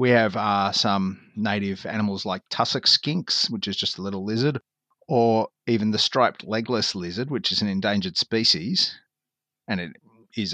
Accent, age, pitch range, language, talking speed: Australian, 30-49, 95-120 Hz, English, 165 wpm